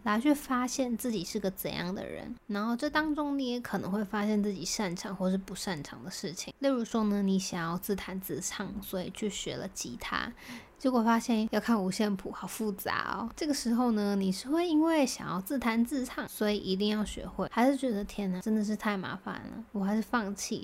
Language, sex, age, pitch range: Chinese, female, 20-39, 195-240 Hz